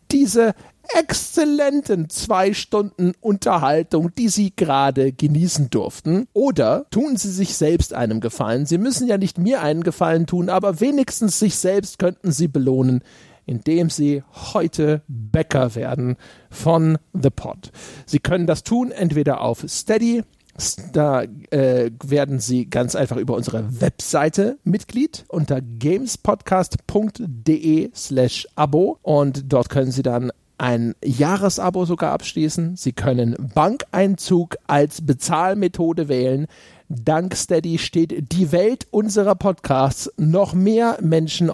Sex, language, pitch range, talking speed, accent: male, German, 135-185 Hz, 125 wpm, German